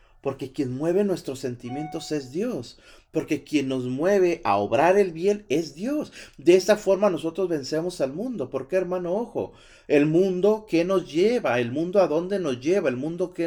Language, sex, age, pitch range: Spanish, male, 40-59, 130-185 Hz